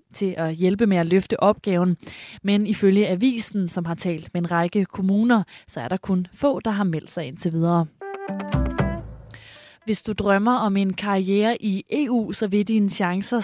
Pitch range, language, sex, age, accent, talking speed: 170-210 Hz, Danish, female, 20-39, native, 180 wpm